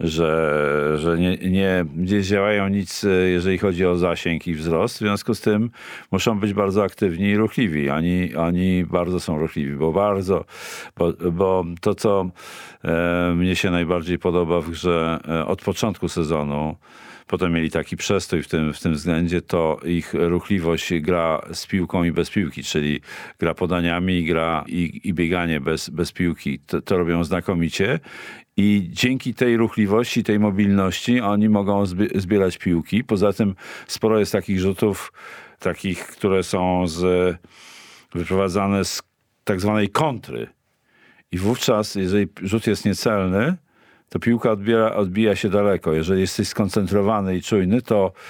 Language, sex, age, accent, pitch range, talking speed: Polish, male, 50-69, native, 85-105 Hz, 150 wpm